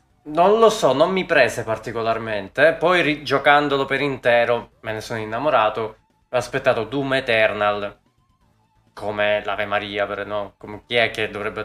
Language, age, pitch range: Italian, 20-39, 110-140 Hz